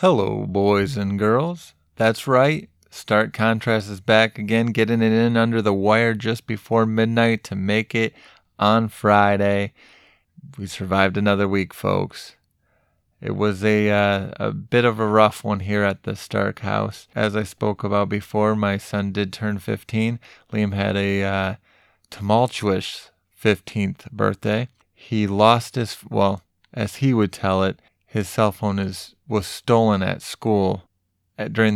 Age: 30-49